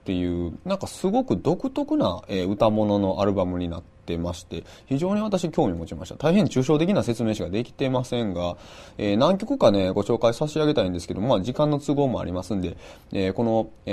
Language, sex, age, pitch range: Japanese, male, 20-39, 90-115 Hz